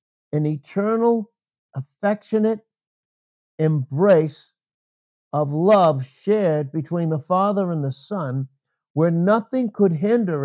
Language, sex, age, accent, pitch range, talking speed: English, male, 60-79, American, 125-185 Hz, 100 wpm